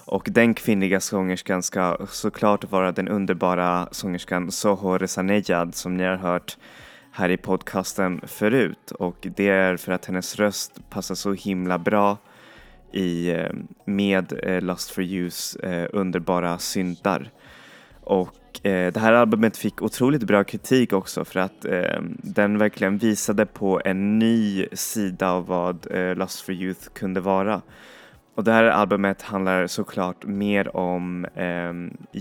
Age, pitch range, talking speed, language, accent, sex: 20-39, 90-105 Hz, 145 wpm, Swedish, native, male